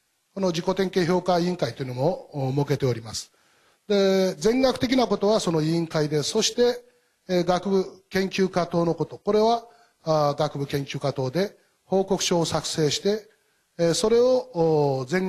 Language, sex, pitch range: Japanese, male, 155-205 Hz